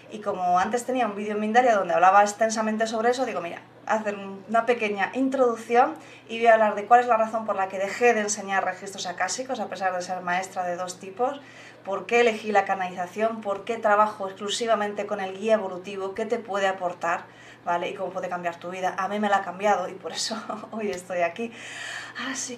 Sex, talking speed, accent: female, 215 wpm, Spanish